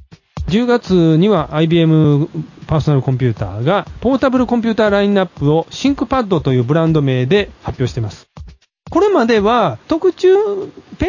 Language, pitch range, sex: Japanese, 140-215 Hz, male